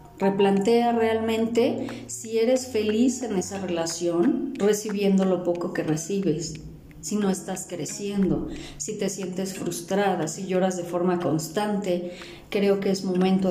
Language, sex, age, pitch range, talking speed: Spanish, female, 40-59, 175-225 Hz, 135 wpm